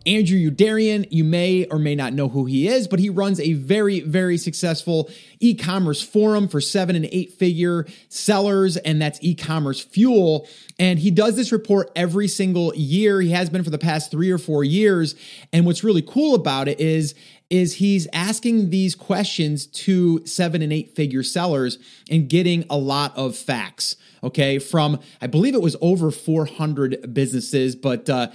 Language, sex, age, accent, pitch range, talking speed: English, male, 30-49, American, 150-195 Hz, 170 wpm